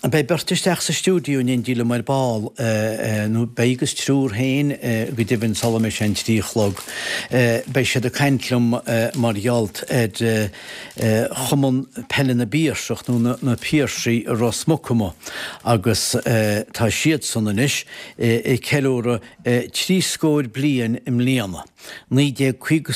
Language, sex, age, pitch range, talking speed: English, male, 60-79, 110-130 Hz, 75 wpm